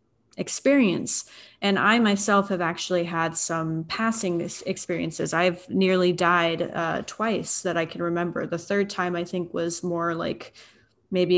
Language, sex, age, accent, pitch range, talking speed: English, female, 20-39, American, 170-195 Hz, 150 wpm